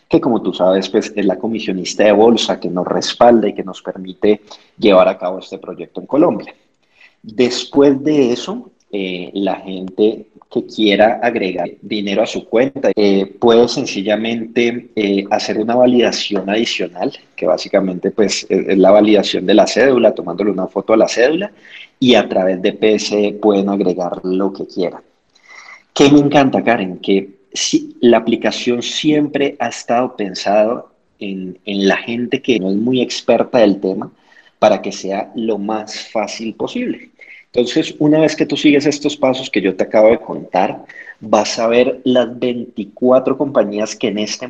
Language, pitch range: Spanish, 100-125 Hz